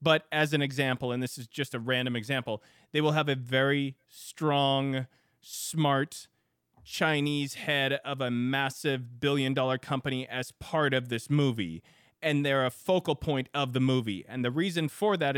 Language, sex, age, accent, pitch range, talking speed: English, male, 30-49, American, 125-155 Hz, 170 wpm